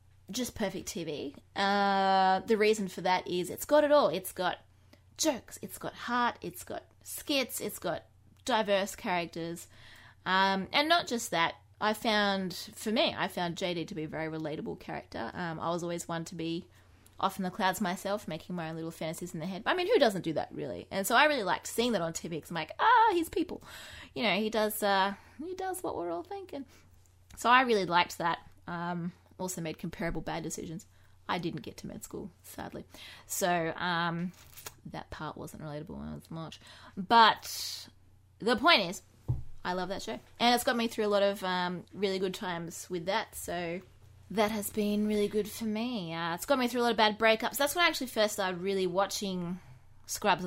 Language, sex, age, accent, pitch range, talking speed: English, female, 20-39, Australian, 170-225 Hz, 205 wpm